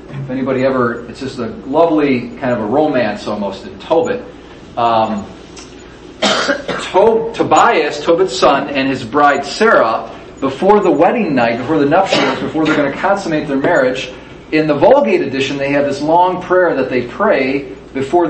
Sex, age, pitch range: male, 40-59, 135-165 Hz